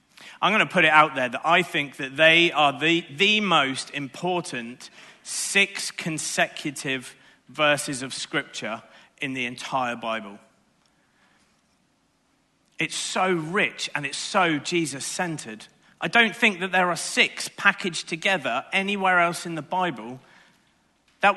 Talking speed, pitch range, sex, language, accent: 135 wpm, 145-185 Hz, male, English, British